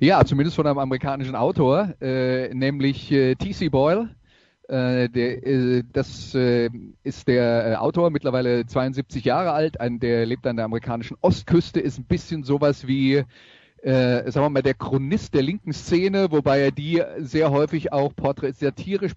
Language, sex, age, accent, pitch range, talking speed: German, male, 30-49, German, 120-145 Hz, 155 wpm